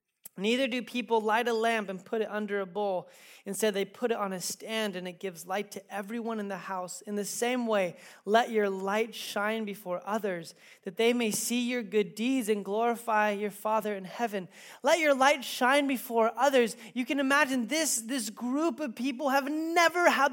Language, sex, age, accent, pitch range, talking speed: English, male, 20-39, American, 205-270 Hz, 200 wpm